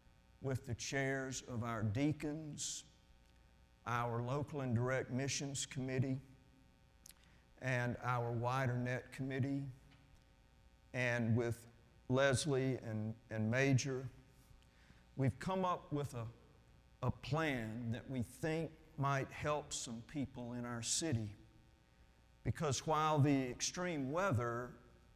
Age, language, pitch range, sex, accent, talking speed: 50-69, English, 110-140 Hz, male, American, 105 wpm